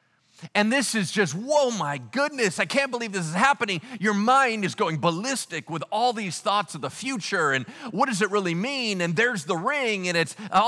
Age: 40-59